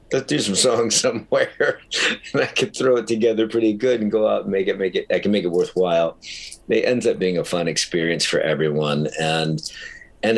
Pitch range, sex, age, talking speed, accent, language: 80-105 Hz, male, 50-69, 215 wpm, American, English